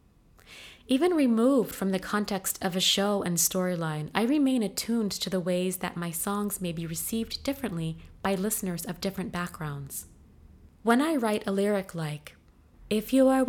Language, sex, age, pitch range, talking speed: English, female, 20-39, 170-215 Hz, 165 wpm